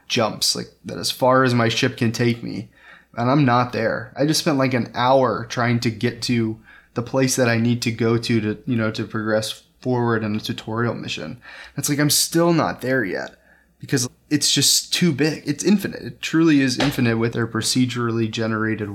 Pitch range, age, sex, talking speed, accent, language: 115-140 Hz, 20-39, male, 205 wpm, American, English